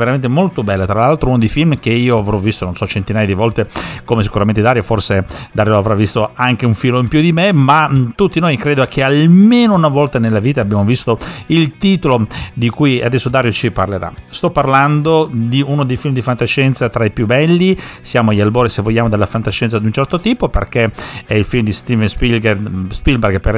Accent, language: native, Italian